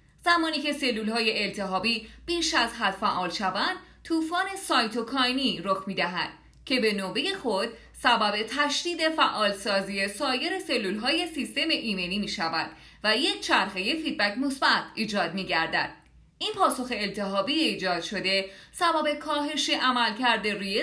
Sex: female